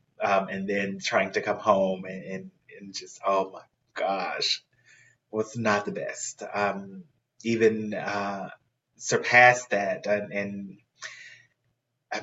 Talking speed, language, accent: 130 wpm, English, American